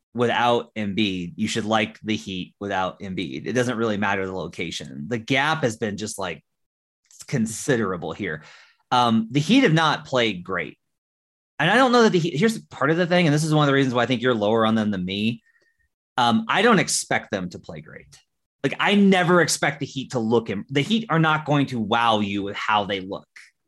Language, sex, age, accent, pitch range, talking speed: English, male, 30-49, American, 110-145 Hz, 220 wpm